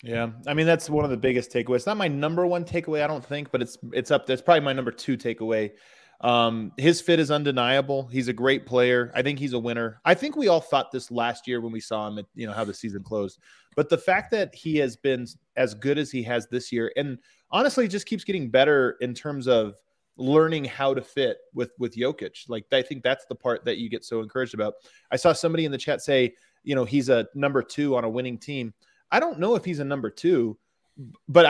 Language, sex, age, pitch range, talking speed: English, male, 20-39, 120-150 Hz, 250 wpm